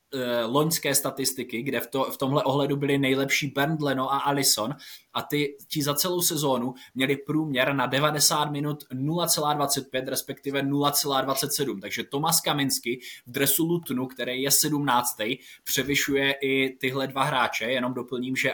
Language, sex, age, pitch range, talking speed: Czech, male, 20-39, 125-145 Hz, 140 wpm